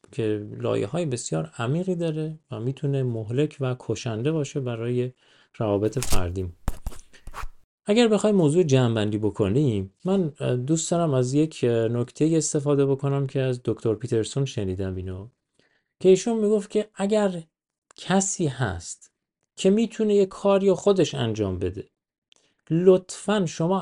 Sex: male